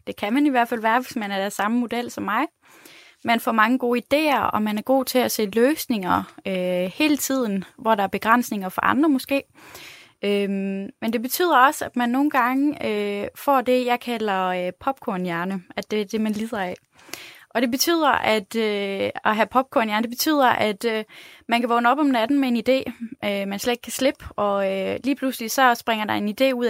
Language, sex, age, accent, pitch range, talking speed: Danish, female, 20-39, native, 205-265 Hz, 220 wpm